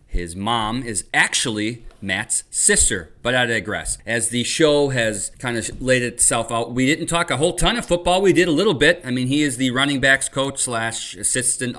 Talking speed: 210 wpm